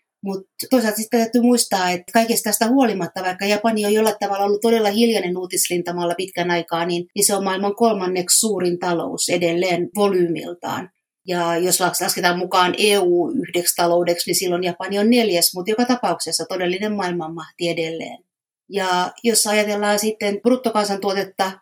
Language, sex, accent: Finnish, female, native